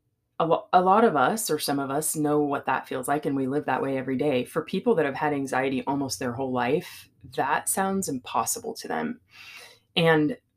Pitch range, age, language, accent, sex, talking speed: 140-170 Hz, 20-39, English, American, female, 215 wpm